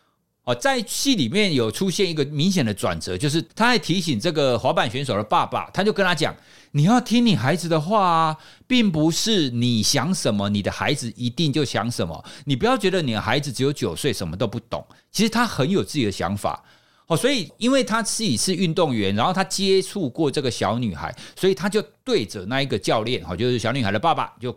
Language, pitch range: Chinese, 115-190 Hz